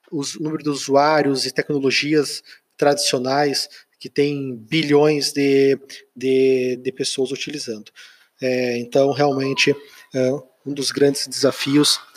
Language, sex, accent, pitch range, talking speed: Portuguese, male, Brazilian, 130-150 Hz, 115 wpm